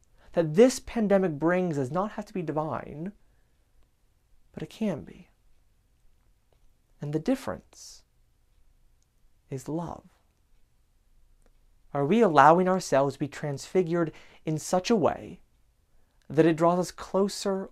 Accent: American